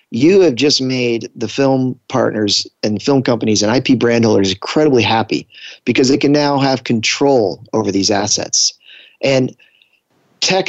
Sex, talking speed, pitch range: male, 150 wpm, 110-130 Hz